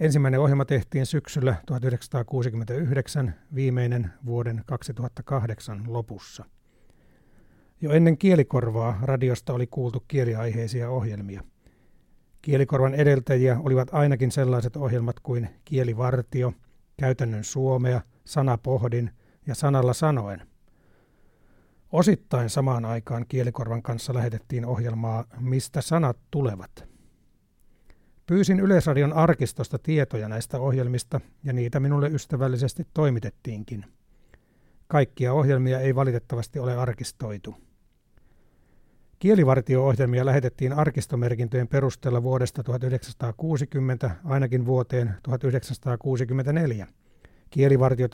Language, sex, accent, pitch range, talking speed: Finnish, male, native, 120-140 Hz, 85 wpm